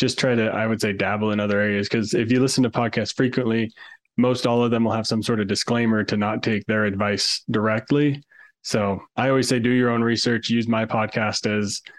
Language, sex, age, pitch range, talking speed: English, male, 20-39, 105-120 Hz, 225 wpm